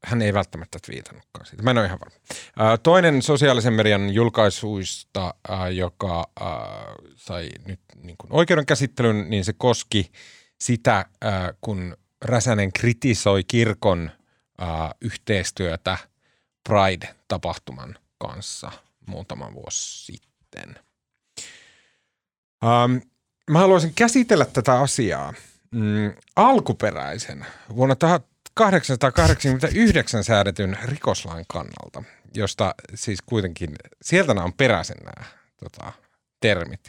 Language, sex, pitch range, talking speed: Finnish, male, 95-135 Hz, 85 wpm